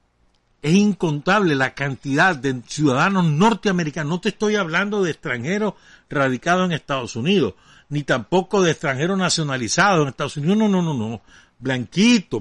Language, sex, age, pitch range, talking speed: Spanish, male, 60-79, 125-190 Hz, 145 wpm